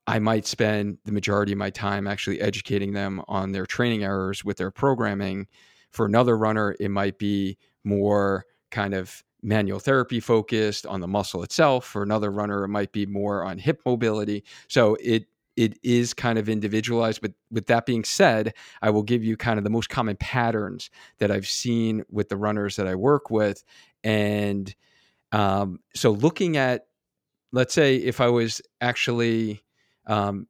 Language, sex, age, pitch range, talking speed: English, male, 40-59, 105-120 Hz, 175 wpm